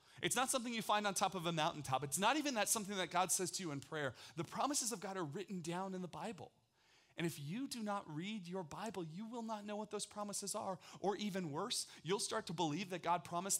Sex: male